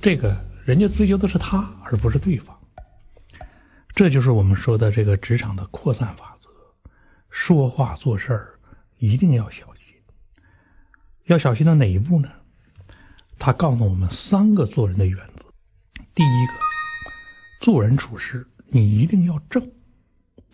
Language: Chinese